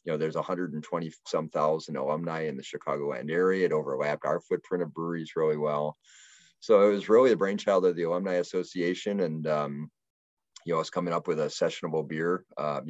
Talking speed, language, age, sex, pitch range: 195 wpm, English, 40-59, male, 75-90 Hz